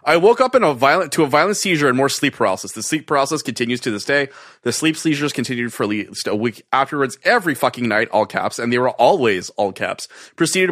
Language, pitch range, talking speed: English, 120-160 Hz, 240 wpm